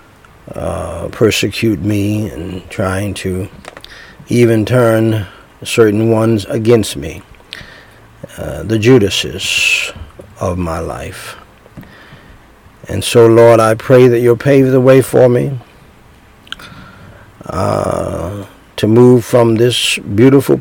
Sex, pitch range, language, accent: male, 100-120 Hz, English, American